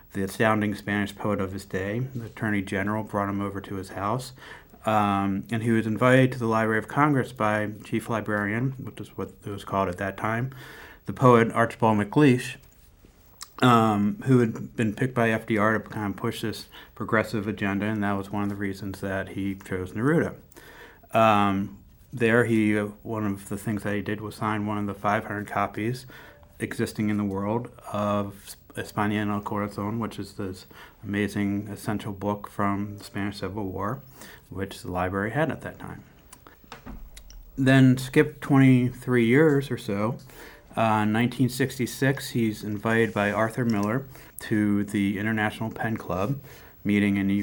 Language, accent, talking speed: English, American, 165 wpm